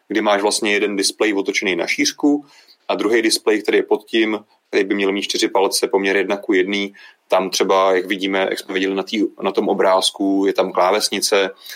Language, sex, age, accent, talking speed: Czech, male, 30-49, native, 200 wpm